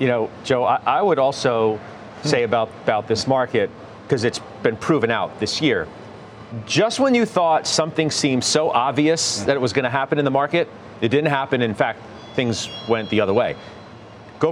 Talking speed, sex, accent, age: 185 wpm, male, American, 40-59